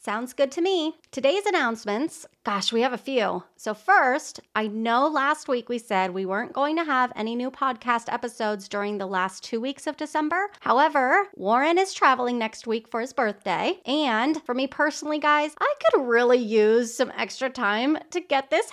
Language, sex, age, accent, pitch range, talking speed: English, female, 30-49, American, 215-295 Hz, 190 wpm